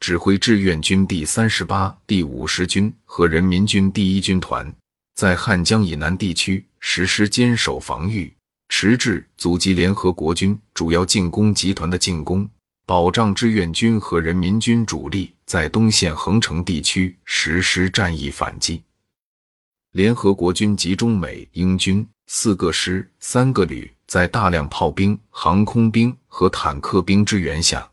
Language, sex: Chinese, male